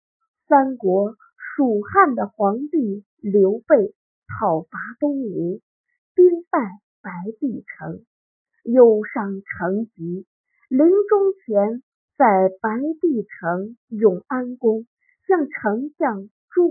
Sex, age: female, 50-69